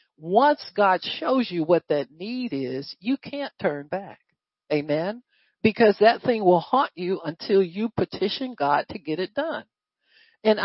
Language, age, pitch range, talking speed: English, 50-69, 185-255 Hz, 160 wpm